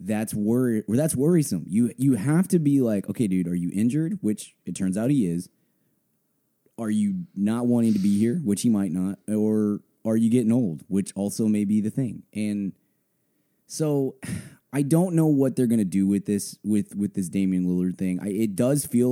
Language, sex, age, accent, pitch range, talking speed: English, male, 20-39, American, 100-125 Hz, 205 wpm